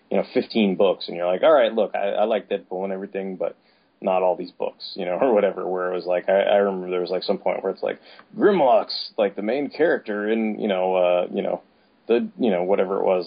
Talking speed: 260 wpm